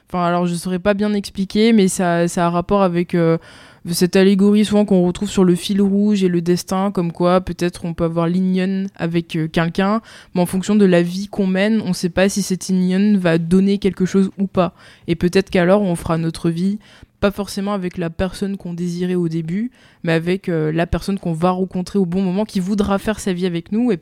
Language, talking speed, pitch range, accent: French, 230 wpm, 170-200 Hz, French